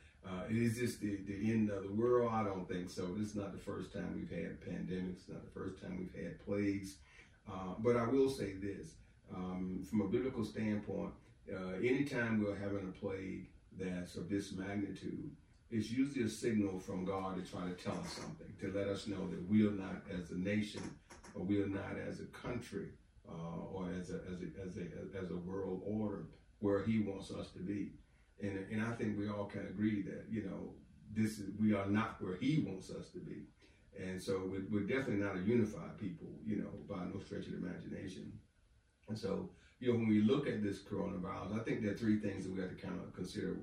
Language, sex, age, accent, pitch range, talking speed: English, male, 40-59, American, 95-105 Hz, 220 wpm